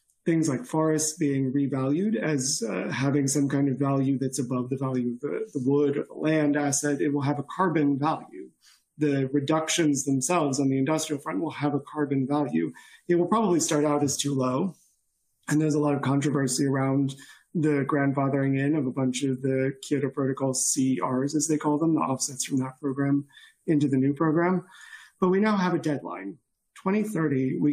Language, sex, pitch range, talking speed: English, male, 135-155 Hz, 195 wpm